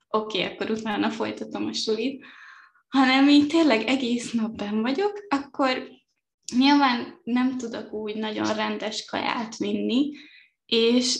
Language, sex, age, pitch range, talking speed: Hungarian, female, 20-39, 220-280 Hz, 120 wpm